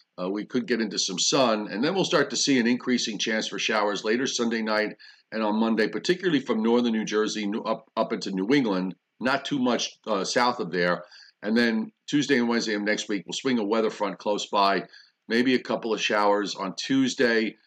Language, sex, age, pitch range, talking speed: English, male, 50-69, 95-125 Hz, 215 wpm